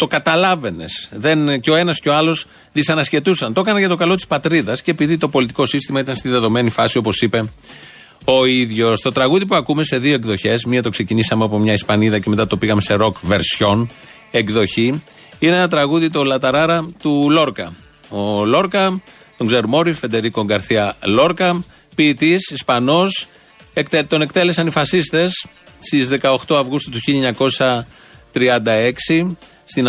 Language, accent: Greek, Spanish